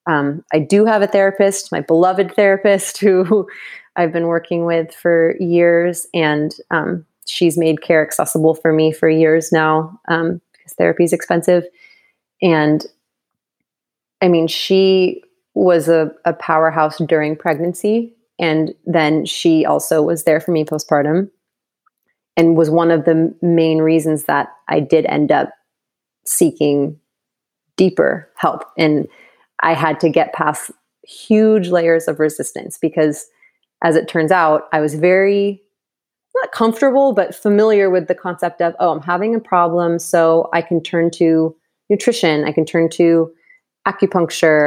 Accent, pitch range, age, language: American, 160-185 Hz, 30-49, English